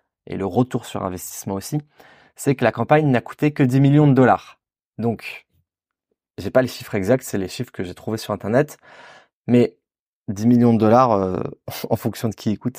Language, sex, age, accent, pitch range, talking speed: French, male, 20-39, French, 100-125 Hz, 195 wpm